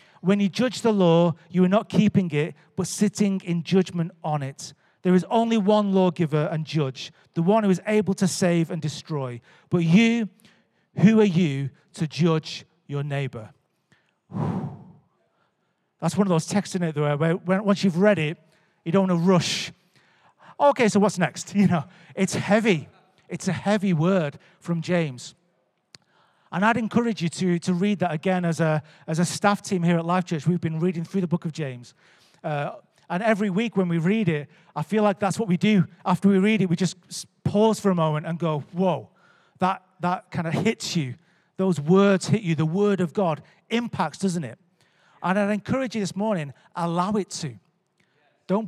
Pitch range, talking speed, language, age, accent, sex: 165-195 Hz, 190 wpm, English, 40-59, British, male